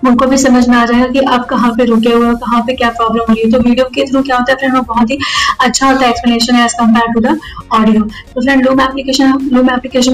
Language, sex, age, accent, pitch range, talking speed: Hindi, female, 10-29, native, 230-255 Hz, 260 wpm